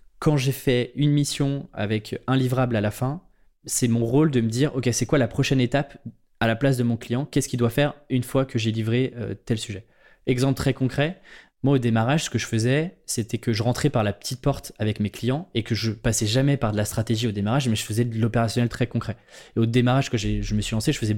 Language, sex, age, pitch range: French, male, 20-39, 110-135 Hz